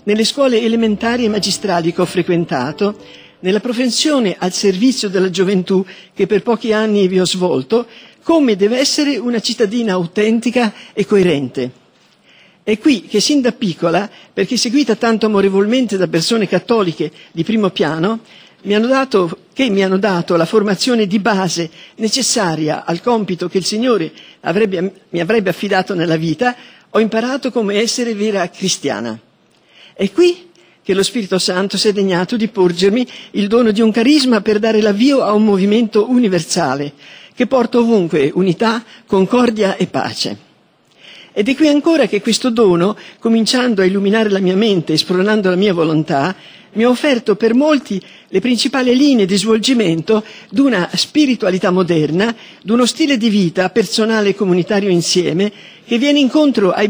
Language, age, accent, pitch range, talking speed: Italian, 50-69, native, 185-235 Hz, 155 wpm